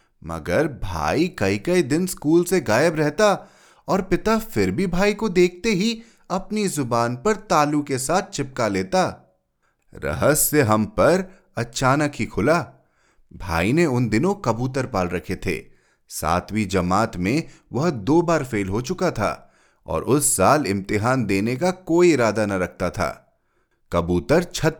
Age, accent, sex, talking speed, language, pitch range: 30-49, native, male, 150 wpm, Hindi, 105-175 Hz